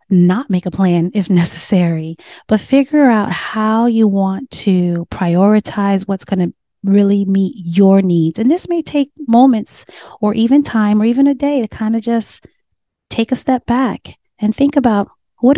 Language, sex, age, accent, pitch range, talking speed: English, female, 30-49, American, 185-235 Hz, 175 wpm